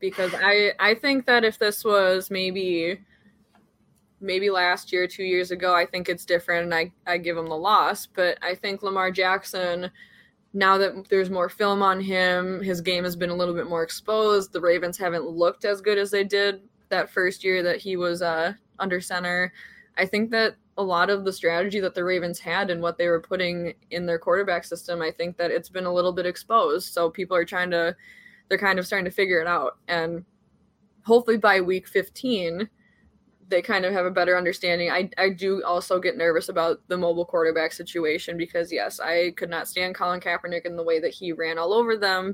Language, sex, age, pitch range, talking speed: English, female, 20-39, 175-195 Hz, 210 wpm